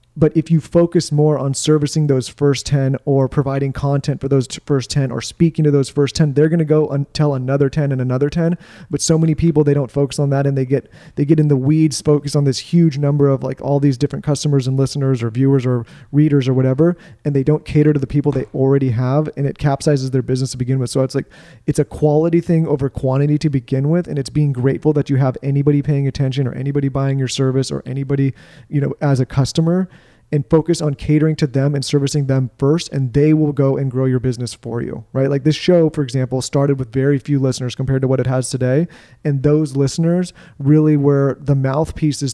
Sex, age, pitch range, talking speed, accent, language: male, 30-49, 130-150 Hz, 235 wpm, American, English